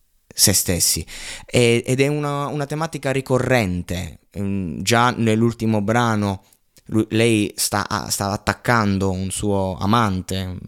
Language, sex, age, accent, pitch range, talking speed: Italian, male, 20-39, native, 90-110 Hz, 100 wpm